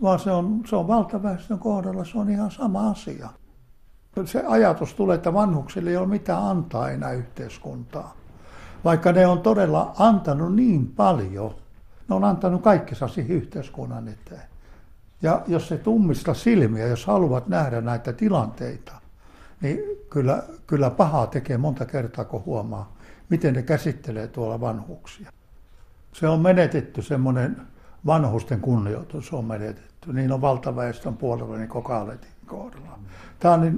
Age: 60-79